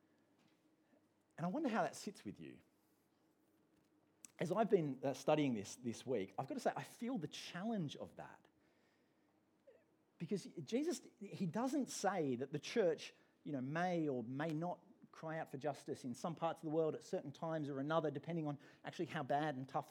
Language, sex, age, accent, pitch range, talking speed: English, male, 40-59, Australian, 130-170 Hz, 185 wpm